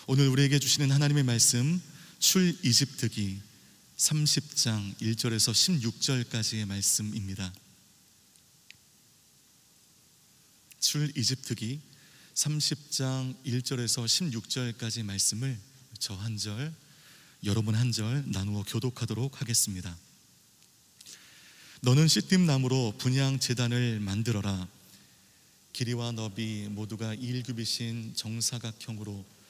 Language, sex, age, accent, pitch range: Korean, male, 30-49, native, 110-130 Hz